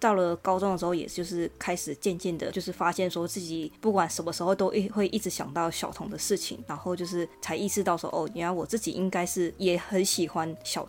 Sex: female